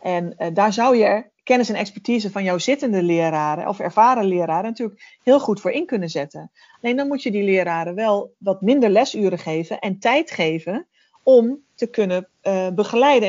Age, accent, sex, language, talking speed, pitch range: 40-59, Dutch, female, Dutch, 185 wpm, 180-230 Hz